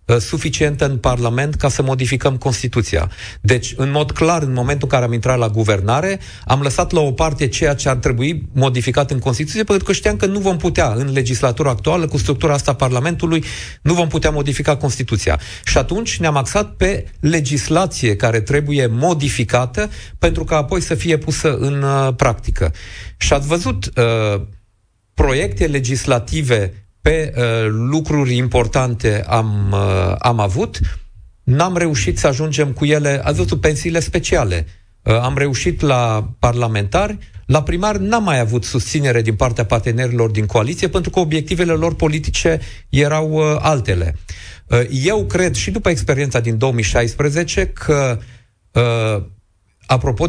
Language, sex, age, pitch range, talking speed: Romanian, male, 40-59, 110-150 Hz, 145 wpm